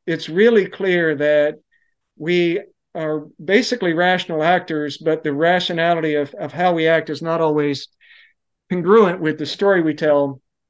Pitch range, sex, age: 155-195 Hz, male, 50-69